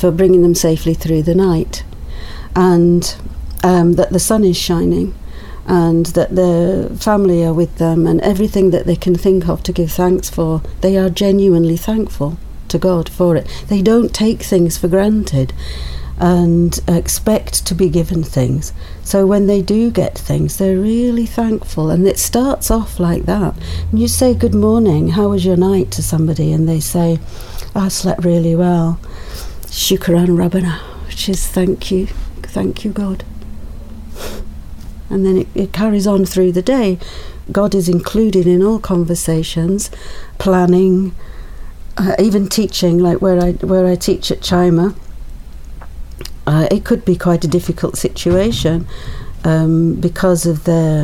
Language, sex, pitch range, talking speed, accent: English, female, 160-190 Hz, 155 wpm, British